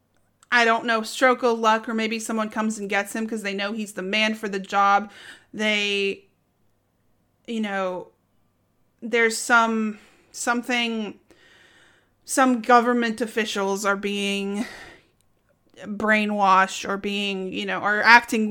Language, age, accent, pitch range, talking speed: English, 30-49, American, 200-265 Hz, 130 wpm